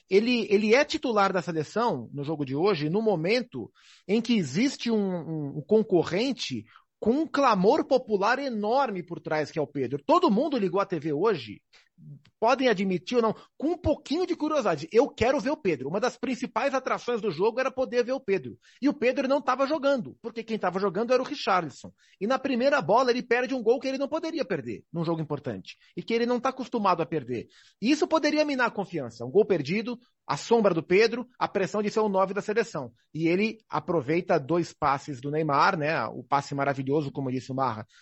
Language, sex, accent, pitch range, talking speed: Portuguese, male, Brazilian, 160-245 Hz, 210 wpm